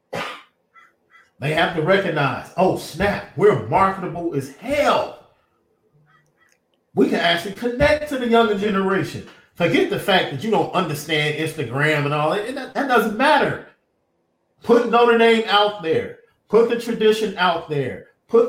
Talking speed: 140 wpm